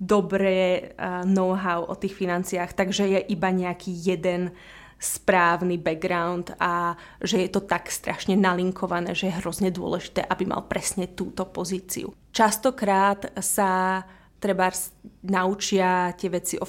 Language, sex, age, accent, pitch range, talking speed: Czech, female, 20-39, native, 180-195 Hz, 125 wpm